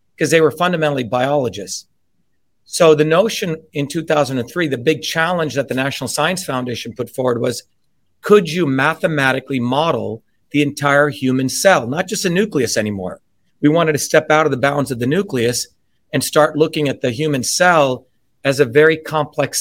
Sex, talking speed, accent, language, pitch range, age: male, 170 wpm, American, English, 130-155 Hz, 40-59